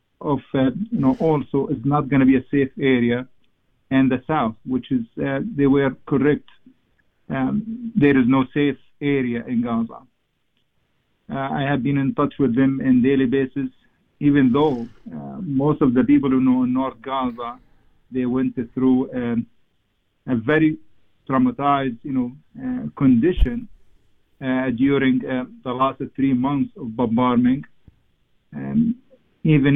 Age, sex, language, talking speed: 50-69, male, English, 145 wpm